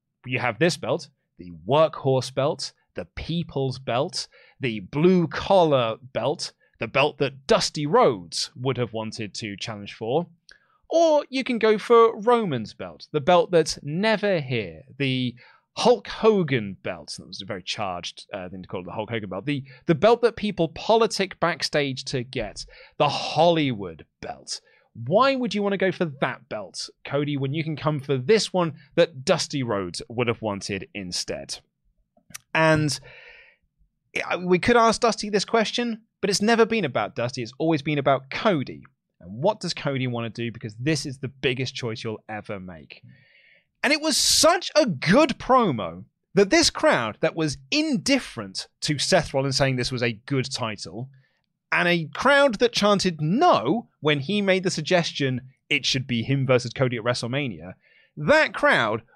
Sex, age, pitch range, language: male, 30-49, 125-200 Hz, English